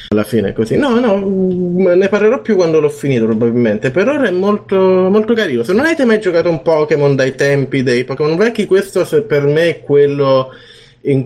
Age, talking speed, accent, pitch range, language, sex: 20-39, 195 wpm, native, 115-145 Hz, Italian, male